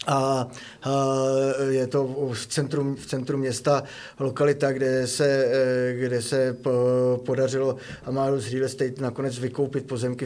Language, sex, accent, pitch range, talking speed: Czech, male, native, 120-130 Hz, 125 wpm